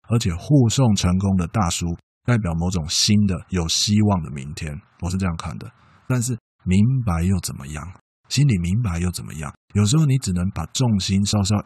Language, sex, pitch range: Chinese, male, 85-115 Hz